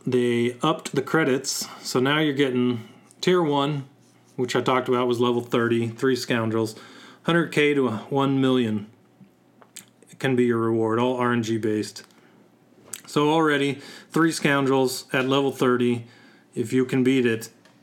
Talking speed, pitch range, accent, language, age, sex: 140 wpm, 115-145 Hz, American, English, 30-49, male